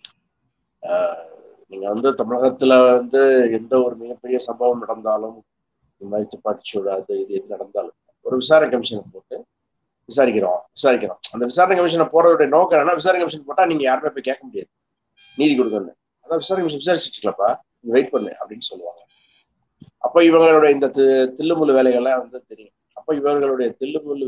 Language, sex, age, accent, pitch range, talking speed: Tamil, male, 30-49, native, 125-170 Hz, 135 wpm